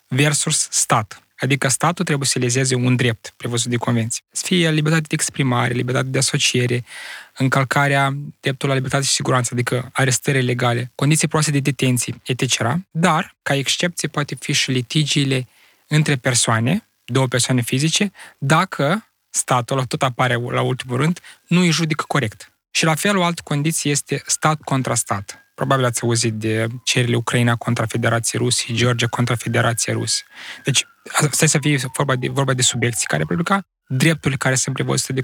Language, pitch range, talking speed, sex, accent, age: Romanian, 125-155 Hz, 165 wpm, male, native, 20-39